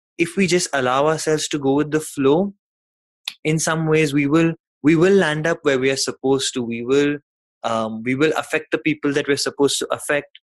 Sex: male